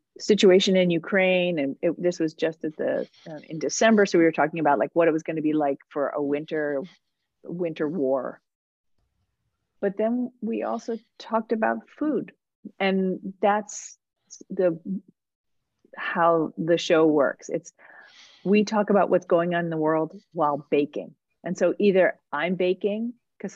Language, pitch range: English, 150-185 Hz